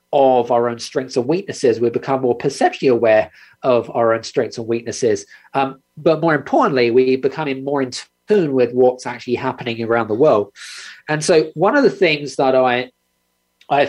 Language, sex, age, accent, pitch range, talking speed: English, male, 40-59, British, 125-180 Hz, 185 wpm